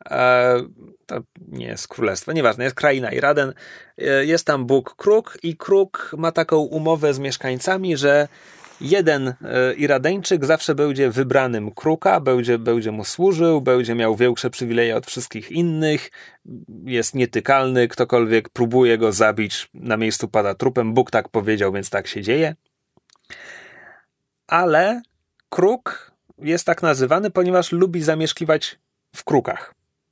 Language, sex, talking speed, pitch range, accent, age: Polish, male, 125 wpm, 125-175 Hz, native, 30-49